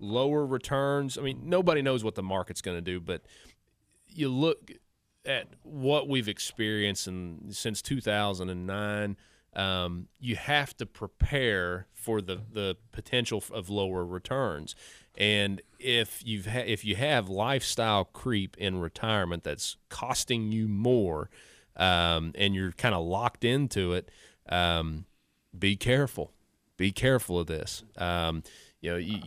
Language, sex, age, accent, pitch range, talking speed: English, male, 30-49, American, 95-120 Hz, 135 wpm